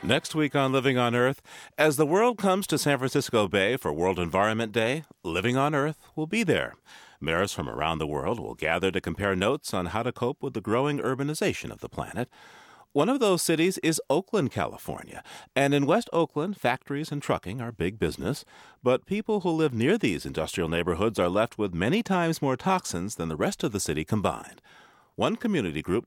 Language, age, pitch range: English, 40-59, 105-175 Hz